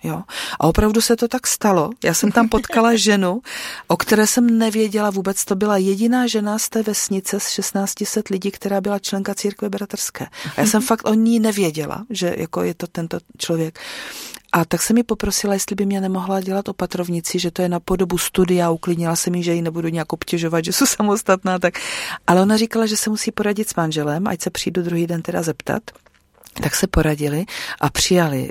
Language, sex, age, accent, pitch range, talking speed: Czech, female, 40-59, native, 160-195 Hz, 200 wpm